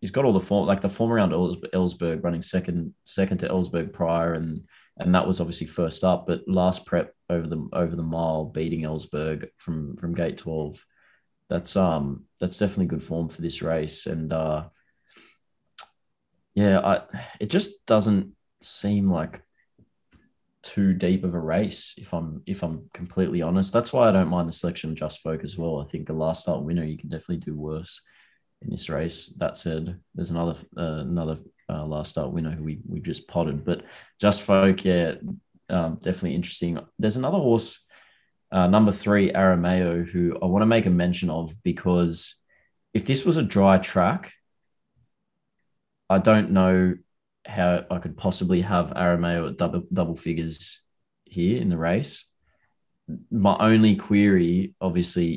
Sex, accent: male, Australian